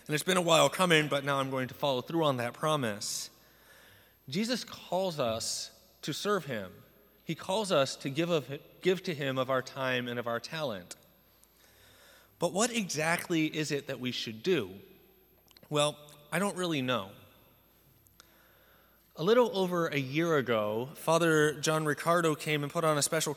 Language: English